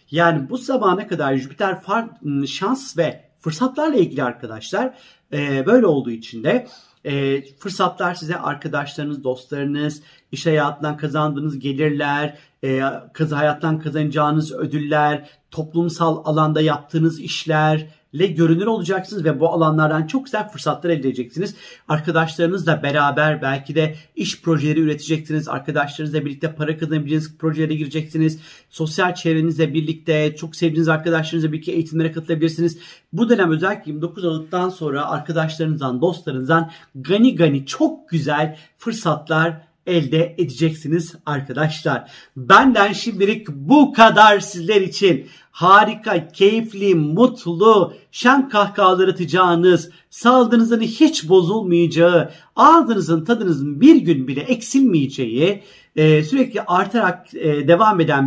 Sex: male